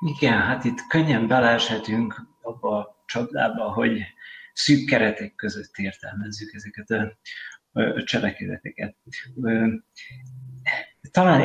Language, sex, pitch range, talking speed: Hungarian, male, 95-130 Hz, 90 wpm